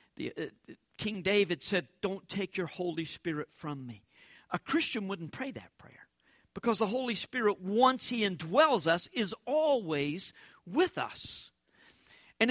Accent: American